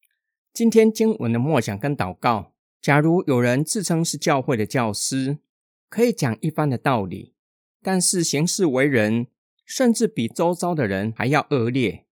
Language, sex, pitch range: Chinese, male, 115-185 Hz